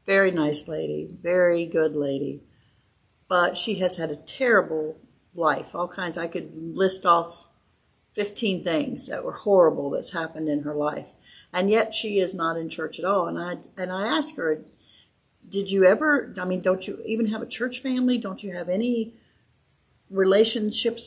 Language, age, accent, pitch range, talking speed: English, 40-59, American, 175-235 Hz, 175 wpm